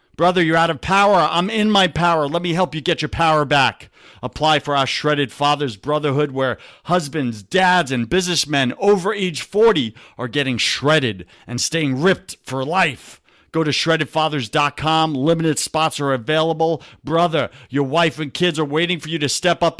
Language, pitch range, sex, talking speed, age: English, 130-165 Hz, male, 175 wpm, 50-69